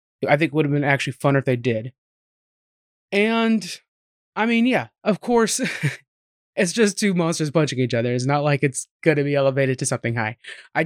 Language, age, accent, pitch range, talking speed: English, 20-39, American, 145-180 Hz, 200 wpm